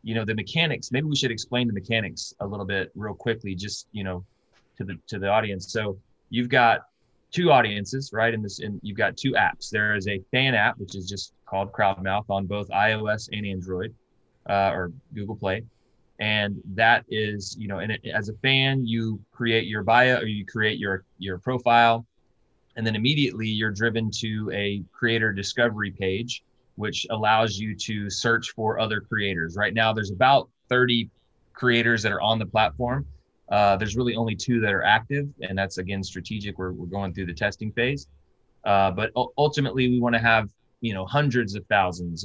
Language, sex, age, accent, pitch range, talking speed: English, male, 20-39, American, 95-115 Hz, 190 wpm